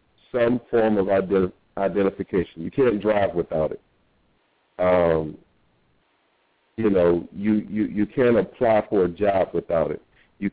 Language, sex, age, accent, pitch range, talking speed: English, male, 50-69, American, 90-115 Hz, 135 wpm